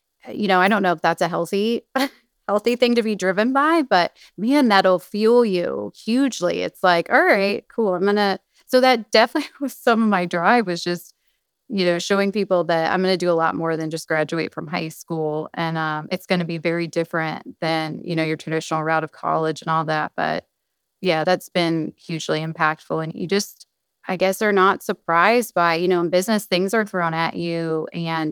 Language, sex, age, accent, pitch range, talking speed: English, female, 20-39, American, 165-200 Hz, 215 wpm